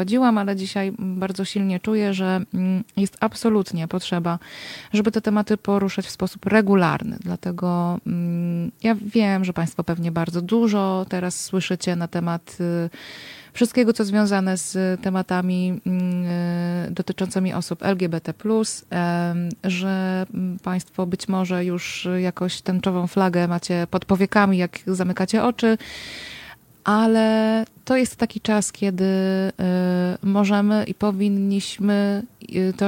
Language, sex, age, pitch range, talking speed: Polish, female, 30-49, 175-200 Hz, 110 wpm